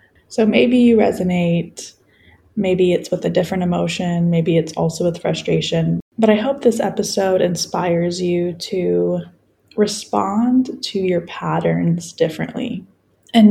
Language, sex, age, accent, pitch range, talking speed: English, female, 10-29, American, 170-210 Hz, 130 wpm